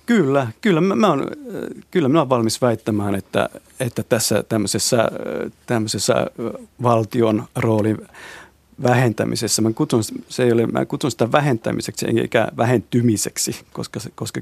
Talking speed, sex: 115 wpm, male